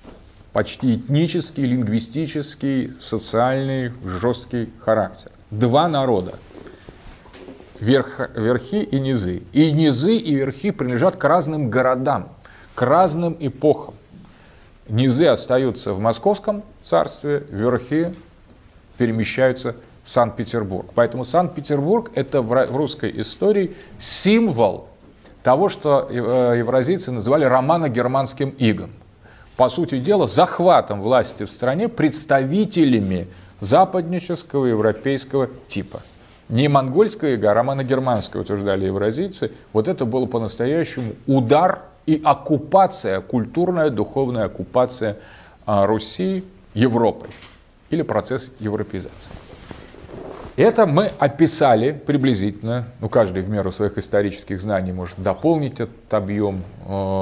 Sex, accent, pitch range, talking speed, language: male, native, 105-150 Hz, 95 wpm, Russian